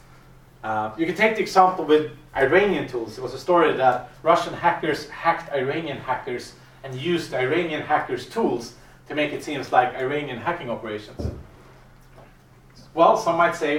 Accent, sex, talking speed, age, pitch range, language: Norwegian, male, 155 wpm, 30-49, 135-180 Hz, English